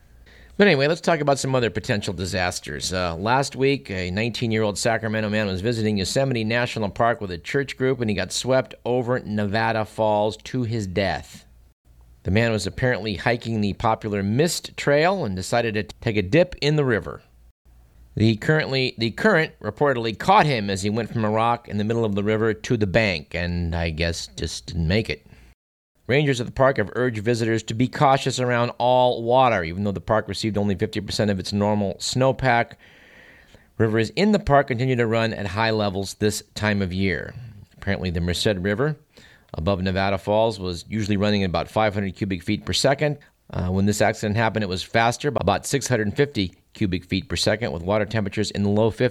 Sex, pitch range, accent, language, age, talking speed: male, 95-120 Hz, American, English, 50-69, 190 wpm